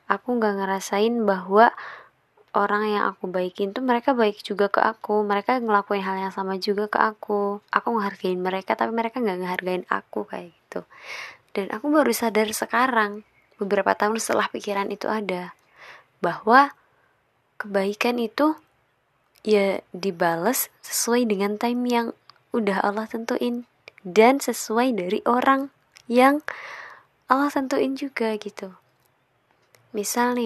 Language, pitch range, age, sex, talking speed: Indonesian, 200-240 Hz, 20-39, female, 130 wpm